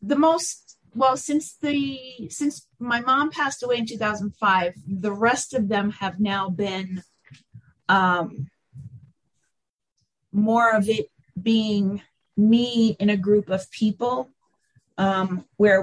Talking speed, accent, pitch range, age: 120 wpm, American, 190-220 Hz, 40-59